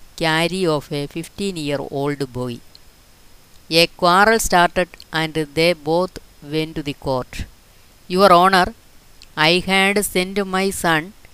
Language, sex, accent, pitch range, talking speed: Malayalam, female, native, 145-180 Hz, 125 wpm